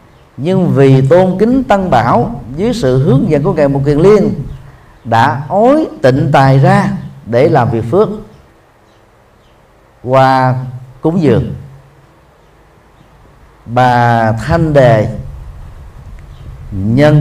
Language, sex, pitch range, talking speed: Vietnamese, male, 115-155 Hz, 110 wpm